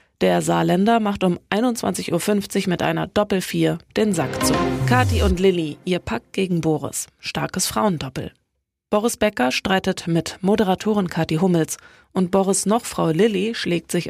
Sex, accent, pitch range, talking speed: female, German, 165-215 Hz, 150 wpm